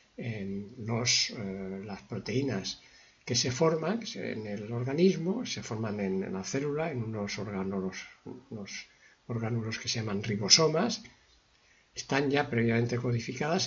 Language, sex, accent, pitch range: Spanish, male, Spanish, 110-155 Hz